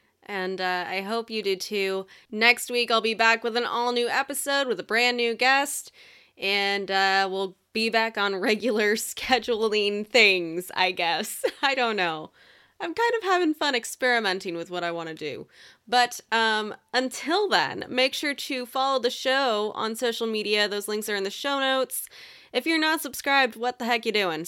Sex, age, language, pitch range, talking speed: female, 20-39, English, 190-250 Hz, 185 wpm